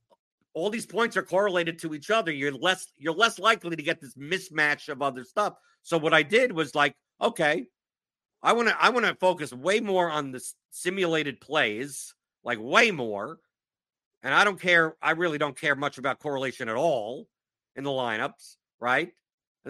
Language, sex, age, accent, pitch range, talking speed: English, male, 50-69, American, 145-185 Hz, 190 wpm